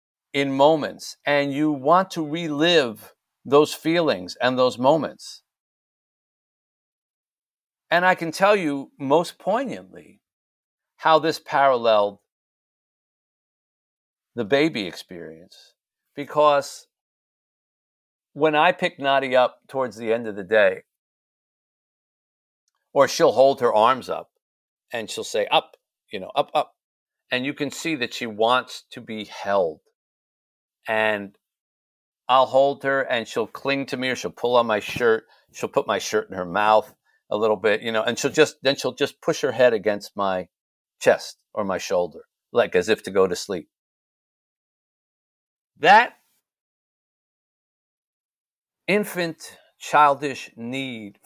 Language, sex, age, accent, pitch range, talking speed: English, male, 50-69, American, 115-160 Hz, 135 wpm